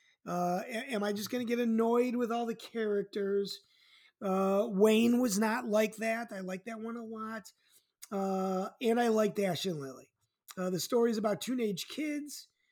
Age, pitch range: 30-49, 205-260 Hz